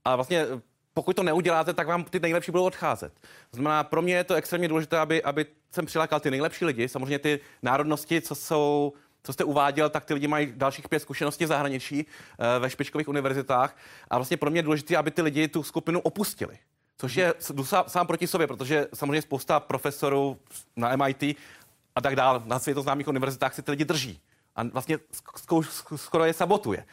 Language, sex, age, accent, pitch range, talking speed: Czech, male, 30-49, native, 140-160 Hz, 185 wpm